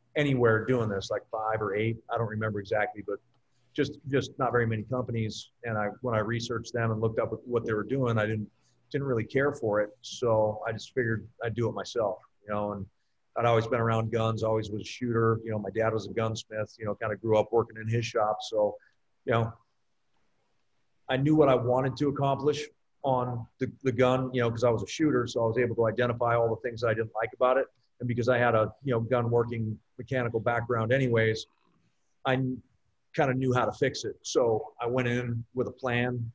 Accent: American